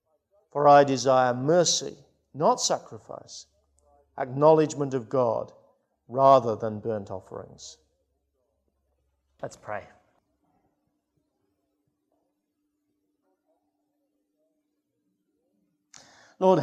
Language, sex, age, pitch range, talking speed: English, male, 50-69, 115-170 Hz, 60 wpm